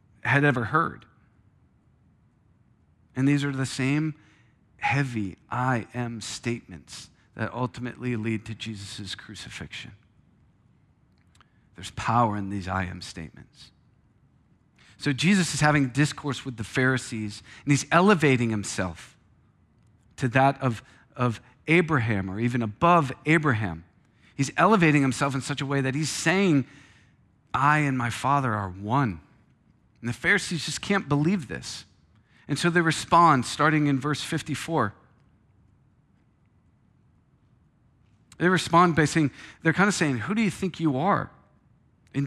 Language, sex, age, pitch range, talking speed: English, male, 40-59, 110-150 Hz, 130 wpm